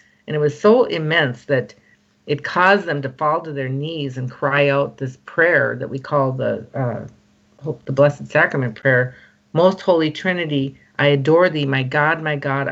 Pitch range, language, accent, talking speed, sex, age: 140-165 Hz, English, American, 180 wpm, female, 50-69